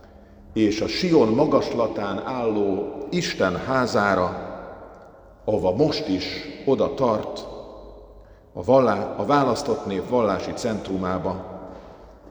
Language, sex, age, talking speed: Hungarian, male, 50-69, 85 wpm